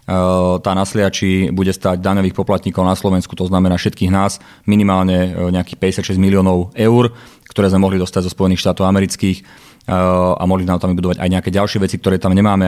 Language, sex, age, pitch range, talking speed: Slovak, male, 30-49, 95-100 Hz, 175 wpm